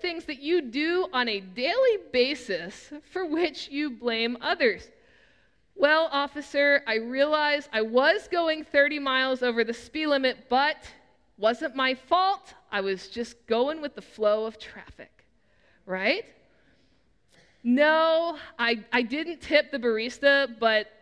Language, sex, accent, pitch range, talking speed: English, female, American, 240-310 Hz, 135 wpm